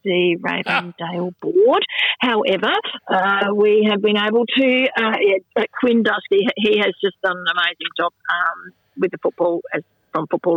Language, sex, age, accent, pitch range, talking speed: English, female, 40-59, Australian, 185-230 Hz, 160 wpm